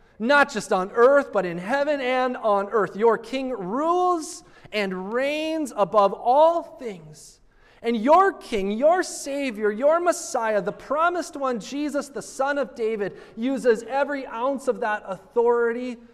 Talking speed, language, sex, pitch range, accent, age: 145 wpm, English, male, 155-230 Hz, American, 30-49